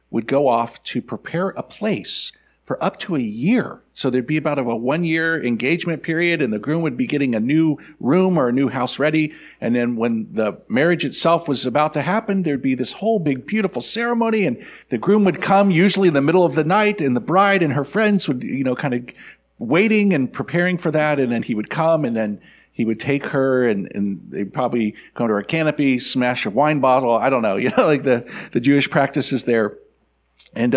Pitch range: 125-165 Hz